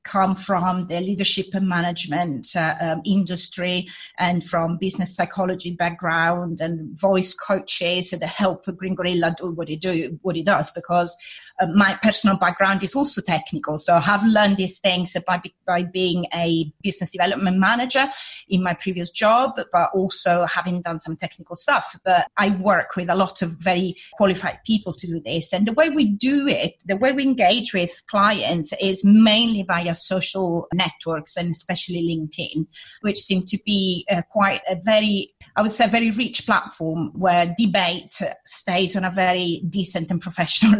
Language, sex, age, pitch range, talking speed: English, female, 30-49, 175-200 Hz, 170 wpm